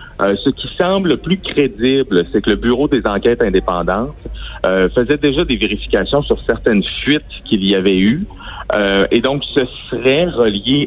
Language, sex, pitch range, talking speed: French, male, 100-140 Hz, 175 wpm